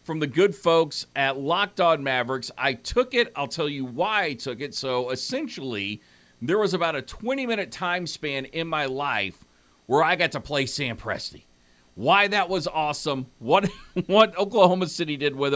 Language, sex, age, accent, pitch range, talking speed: English, male, 50-69, American, 130-175 Hz, 180 wpm